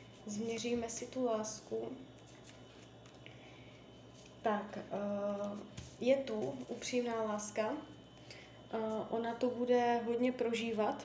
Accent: native